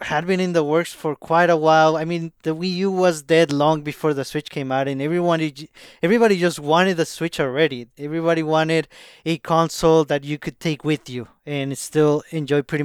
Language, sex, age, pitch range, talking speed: English, male, 20-39, 150-175 Hz, 205 wpm